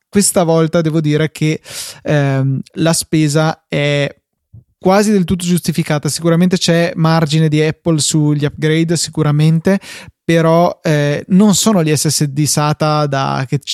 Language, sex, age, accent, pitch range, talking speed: Italian, male, 20-39, native, 145-170 Hz, 125 wpm